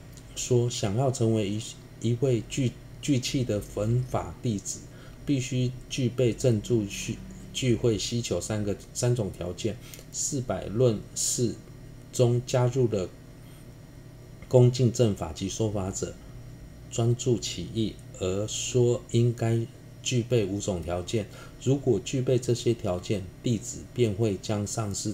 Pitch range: 100-130 Hz